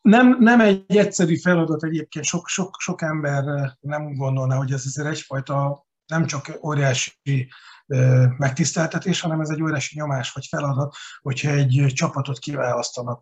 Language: Hungarian